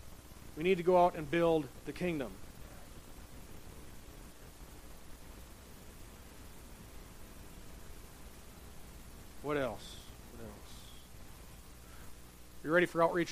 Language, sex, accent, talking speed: English, male, American, 80 wpm